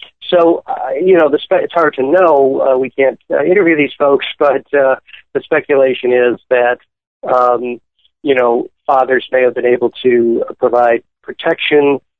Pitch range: 125-160 Hz